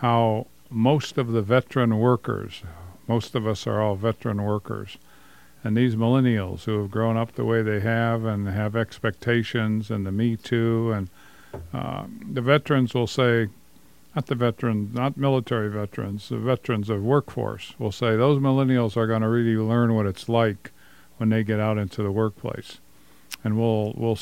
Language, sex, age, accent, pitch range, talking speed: English, male, 50-69, American, 110-130 Hz, 170 wpm